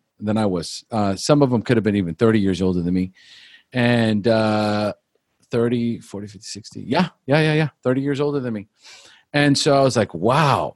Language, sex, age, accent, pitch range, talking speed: English, male, 40-59, American, 105-130 Hz, 205 wpm